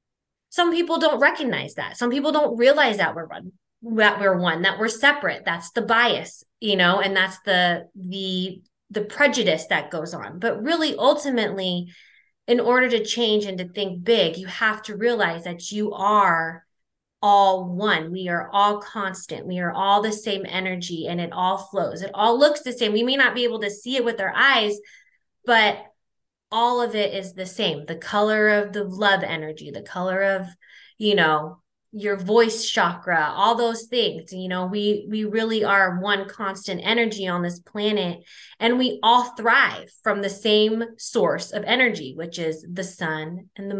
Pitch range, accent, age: 185-230 Hz, American, 20-39